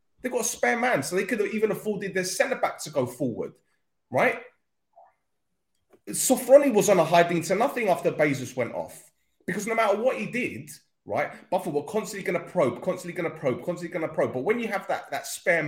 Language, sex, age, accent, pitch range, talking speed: English, male, 30-49, British, 130-210 Hz, 215 wpm